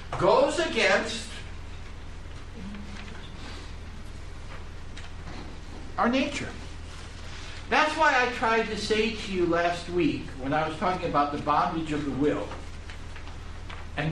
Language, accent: English, American